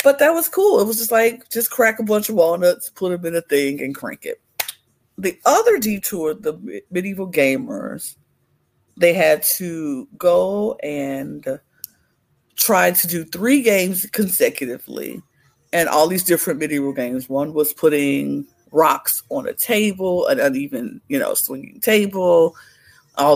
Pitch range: 150-245 Hz